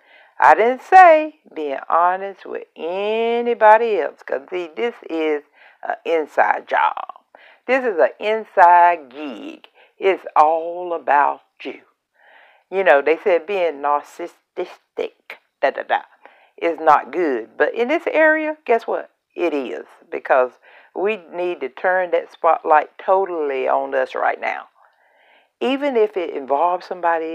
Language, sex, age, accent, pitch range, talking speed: English, female, 60-79, American, 165-245 Hz, 135 wpm